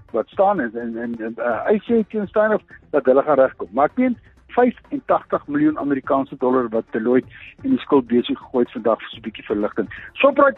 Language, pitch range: English, 145-235 Hz